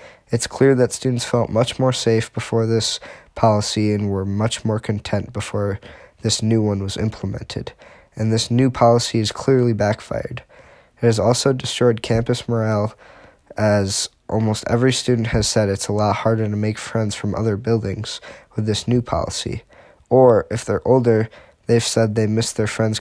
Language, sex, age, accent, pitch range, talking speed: English, male, 10-29, American, 110-125 Hz, 170 wpm